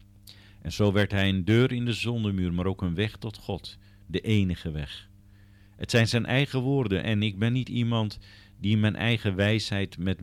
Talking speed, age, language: 195 wpm, 50-69, Dutch